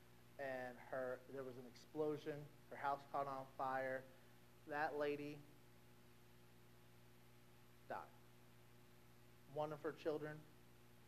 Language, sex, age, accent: English, male, 30-49, American